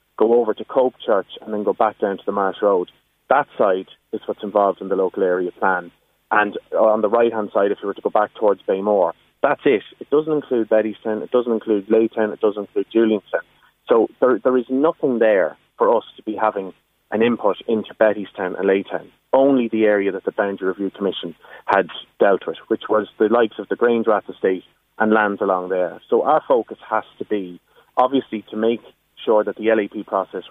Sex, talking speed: male, 205 wpm